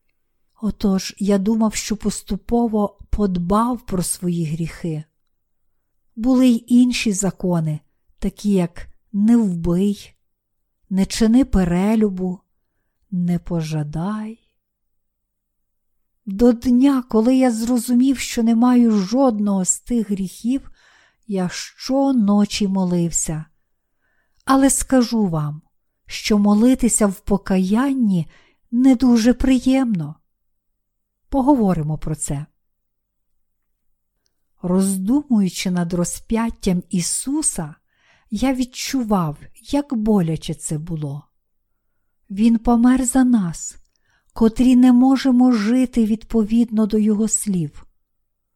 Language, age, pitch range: Ukrainian, 50-69, 160-230 Hz